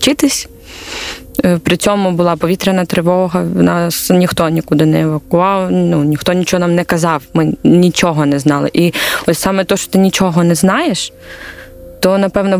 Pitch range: 160-190 Hz